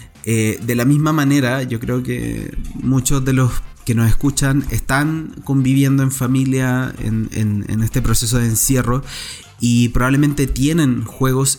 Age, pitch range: 20-39, 115-130 Hz